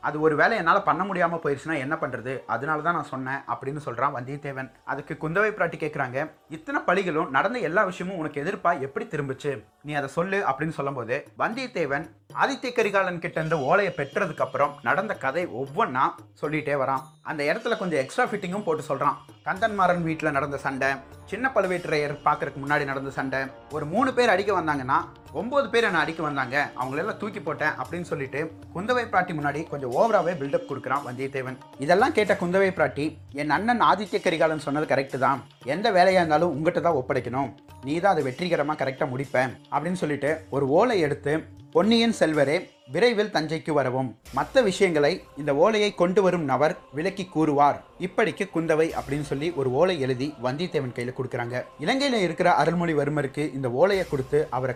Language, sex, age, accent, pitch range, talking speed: Tamil, male, 30-49, native, 135-180 Hz, 105 wpm